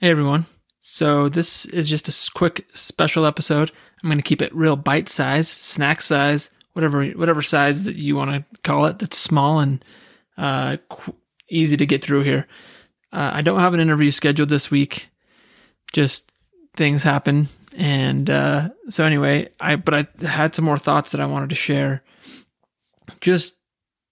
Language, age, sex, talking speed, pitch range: English, 20-39, male, 165 wpm, 140-160 Hz